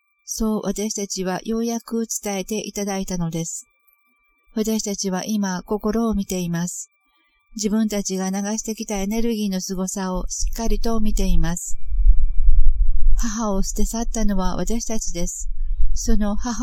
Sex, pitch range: female, 190-225 Hz